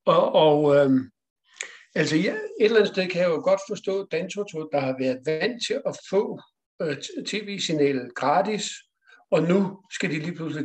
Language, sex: Danish, male